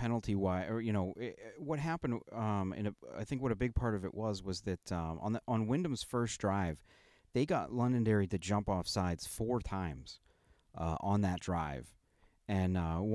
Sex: male